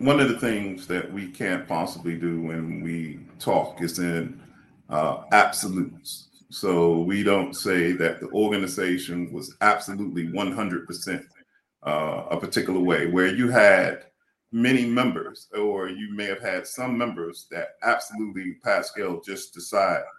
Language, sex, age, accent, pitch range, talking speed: English, male, 40-59, American, 95-125 Hz, 140 wpm